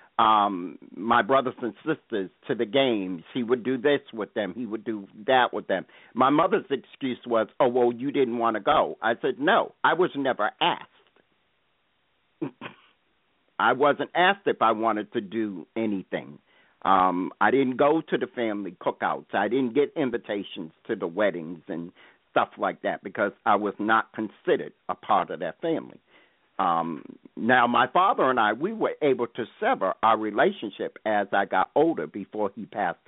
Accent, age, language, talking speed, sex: American, 50-69, English, 175 wpm, male